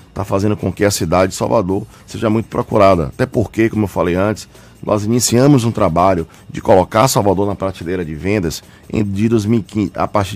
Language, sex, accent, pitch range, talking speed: Portuguese, male, Brazilian, 95-115 Hz, 175 wpm